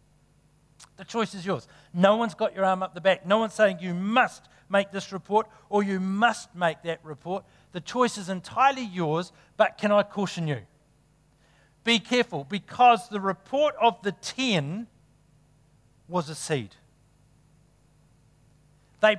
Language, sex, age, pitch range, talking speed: English, male, 50-69, 150-220 Hz, 150 wpm